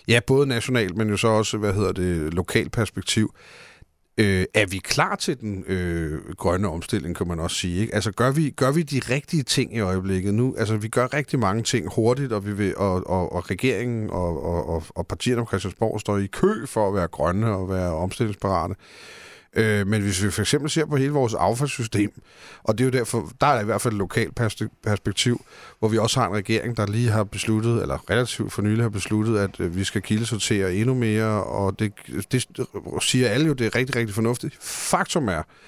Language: Danish